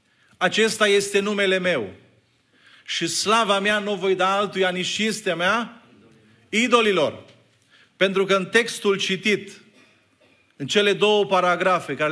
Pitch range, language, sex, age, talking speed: 150-210 Hz, Romanian, male, 40-59, 125 wpm